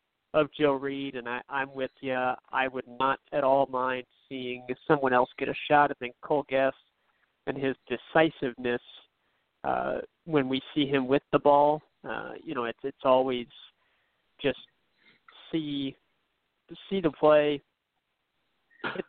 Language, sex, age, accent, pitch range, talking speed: English, male, 40-59, American, 125-145 Hz, 145 wpm